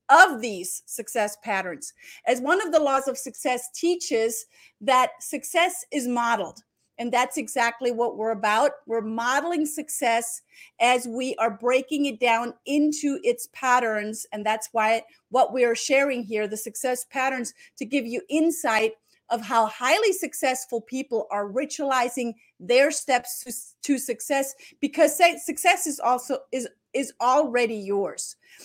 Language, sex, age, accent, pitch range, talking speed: English, female, 40-59, American, 230-295 Hz, 140 wpm